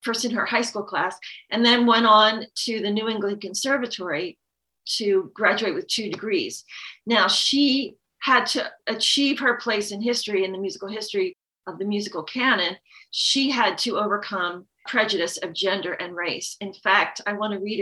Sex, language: female, English